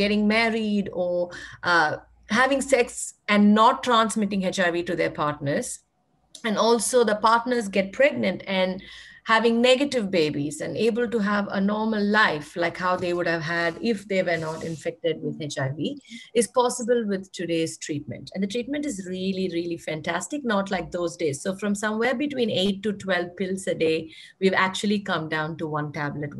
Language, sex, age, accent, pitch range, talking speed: English, female, 50-69, Indian, 160-225 Hz, 175 wpm